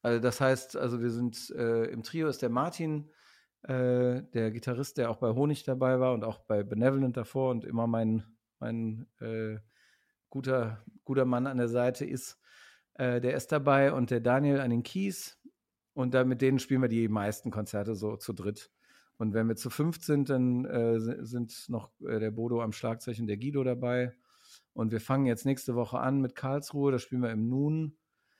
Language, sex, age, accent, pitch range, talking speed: German, male, 50-69, German, 115-135 Hz, 190 wpm